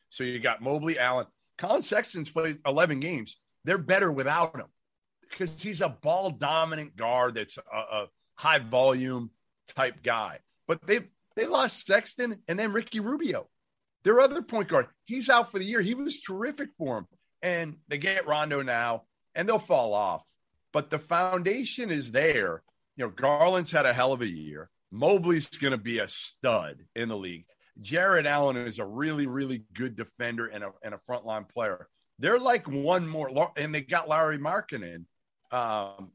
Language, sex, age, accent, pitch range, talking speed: English, male, 40-59, American, 120-165 Hz, 175 wpm